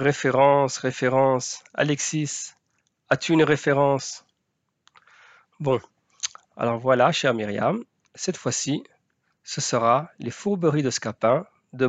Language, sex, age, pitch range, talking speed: French, male, 40-59, 120-155 Hz, 100 wpm